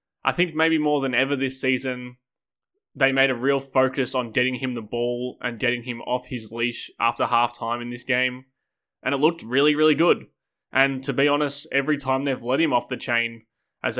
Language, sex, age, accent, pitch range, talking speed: English, male, 20-39, Australian, 120-135 Hz, 205 wpm